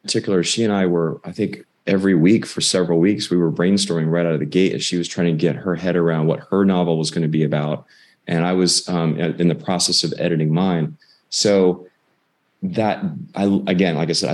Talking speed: 225 wpm